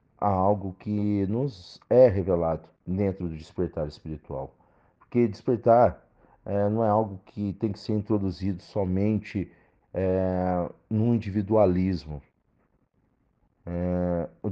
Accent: Brazilian